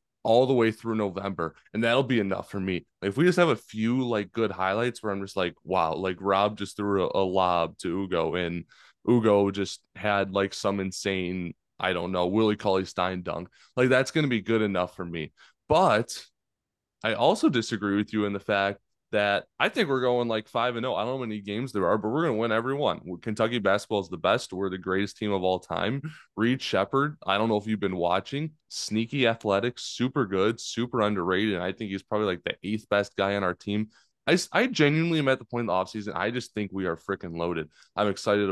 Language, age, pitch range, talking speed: English, 20-39, 95-115 Hz, 230 wpm